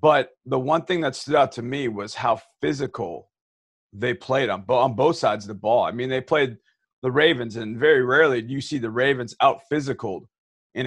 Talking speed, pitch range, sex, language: 210 wpm, 125-155 Hz, male, English